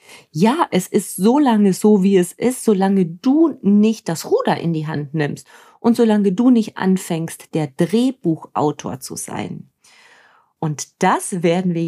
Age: 40-59